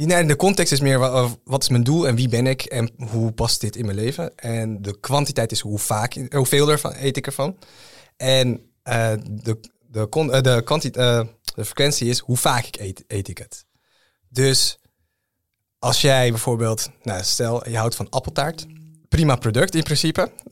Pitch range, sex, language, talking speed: 110-135 Hz, male, Dutch, 155 wpm